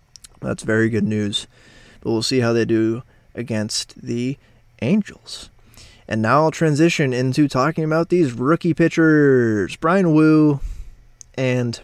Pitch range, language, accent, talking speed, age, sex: 110-135 Hz, English, American, 130 wpm, 20-39, male